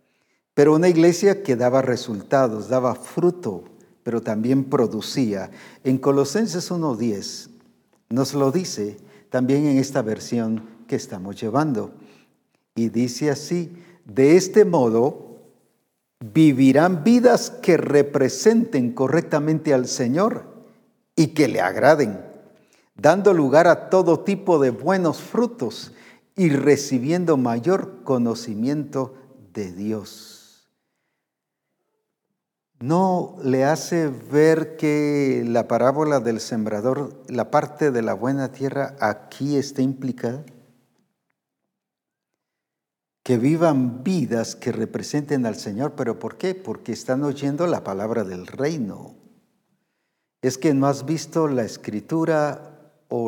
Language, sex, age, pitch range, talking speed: Spanish, male, 50-69, 120-165 Hz, 110 wpm